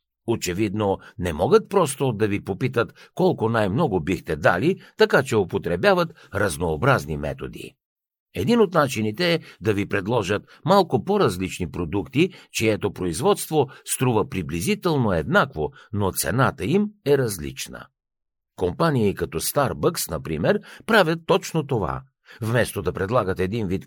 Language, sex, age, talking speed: Bulgarian, male, 60-79, 120 wpm